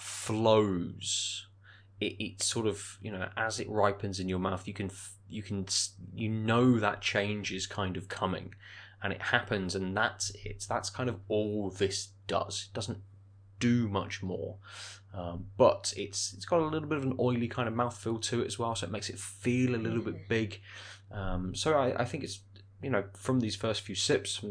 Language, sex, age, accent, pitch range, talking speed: English, male, 20-39, British, 100-110 Hz, 205 wpm